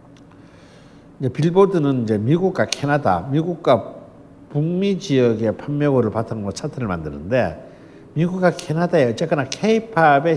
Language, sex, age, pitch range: Korean, male, 60-79, 115-180 Hz